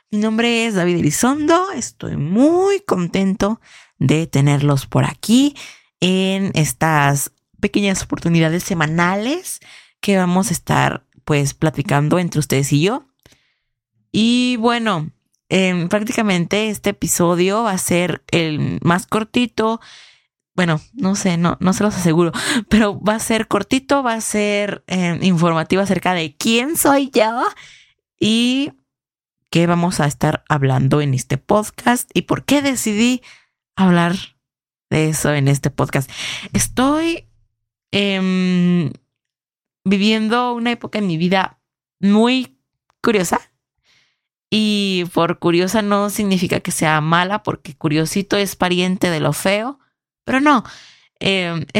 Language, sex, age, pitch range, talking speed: Spanish, female, 20-39, 160-220 Hz, 125 wpm